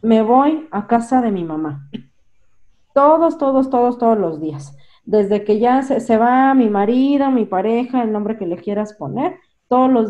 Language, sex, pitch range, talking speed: Spanish, female, 190-235 Hz, 185 wpm